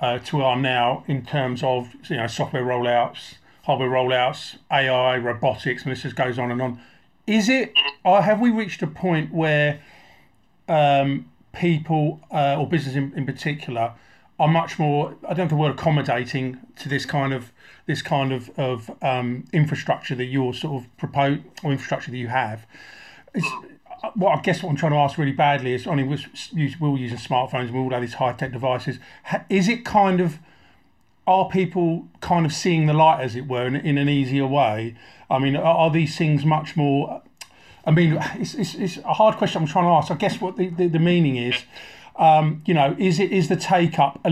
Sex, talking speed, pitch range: male, 200 wpm, 130-170 Hz